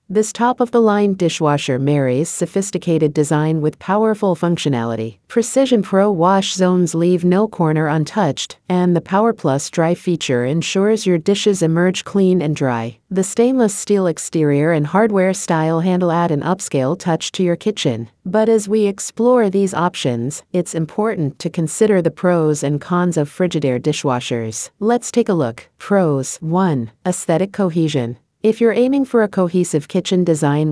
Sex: female